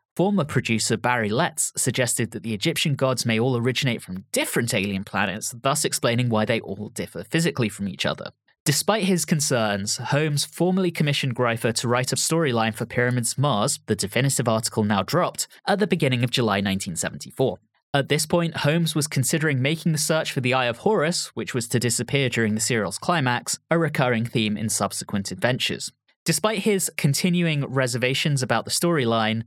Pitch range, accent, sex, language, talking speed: 115-160 Hz, British, male, English, 175 wpm